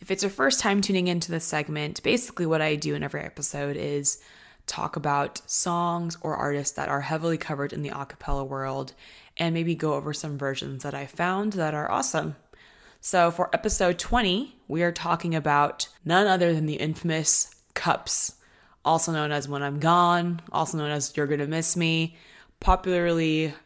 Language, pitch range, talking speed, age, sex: English, 145-175 Hz, 180 wpm, 20-39, female